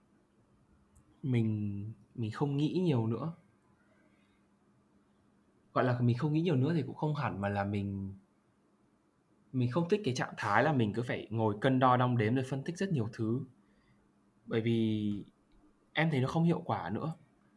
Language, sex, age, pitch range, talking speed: Vietnamese, male, 20-39, 110-140 Hz, 170 wpm